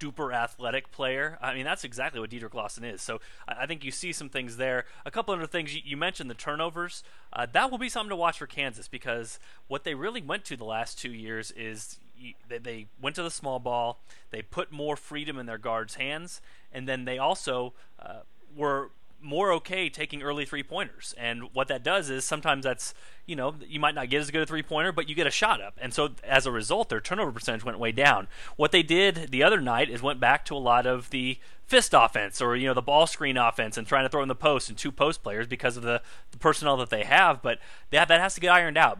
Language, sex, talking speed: English, male, 245 wpm